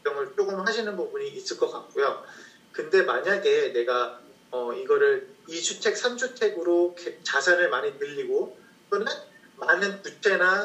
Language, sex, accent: Korean, male, native